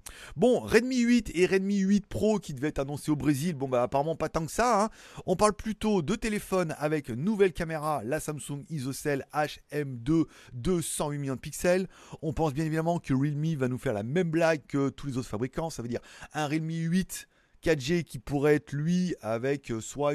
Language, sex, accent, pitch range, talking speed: French, male, French, 125-175 Hz, 205 wpm